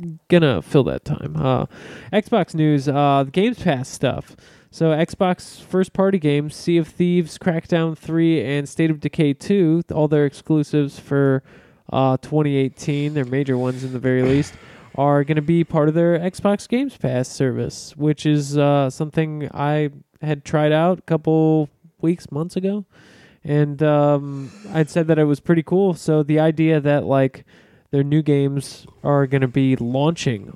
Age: 20-39